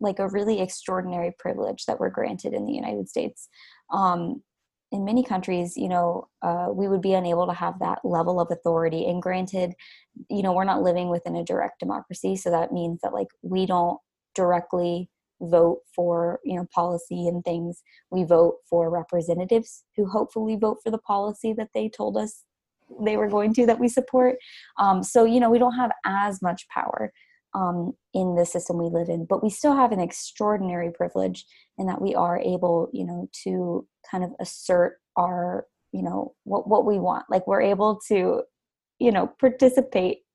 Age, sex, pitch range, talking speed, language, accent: 20-39, female, 175-225 Hz, 185 wpm, English, American